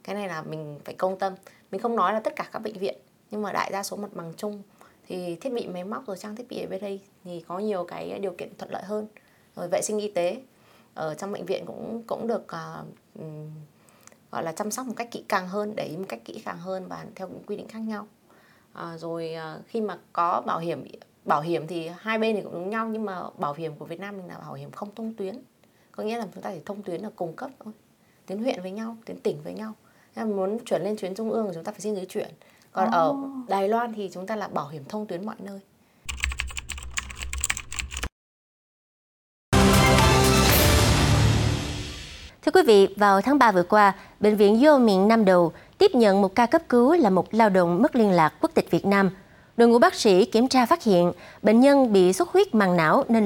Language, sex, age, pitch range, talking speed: Vietnamese, female, 20-39, 175-225 Hz, 230 wpm